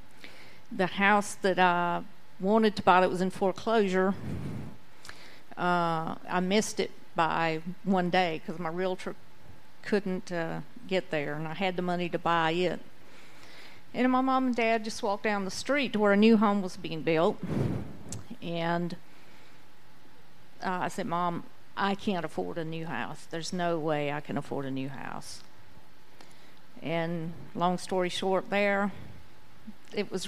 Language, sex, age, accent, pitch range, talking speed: English, female, 50-69, American, 170-205 Hz, 155 wpm